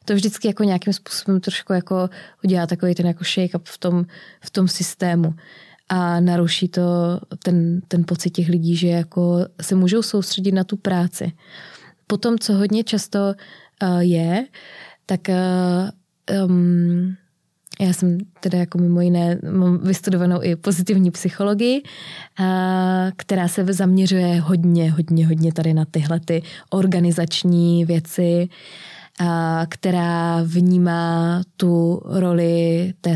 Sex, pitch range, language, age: female, 170-185 Hz, Czech, 20-39